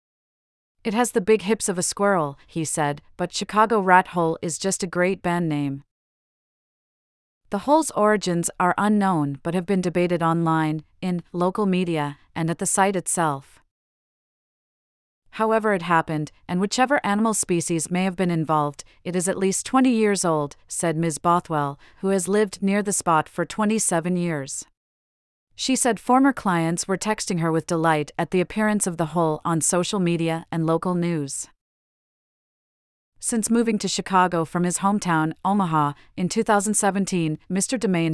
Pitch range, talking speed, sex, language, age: 165-200 Hz, 160 wpm, female, English, 40-59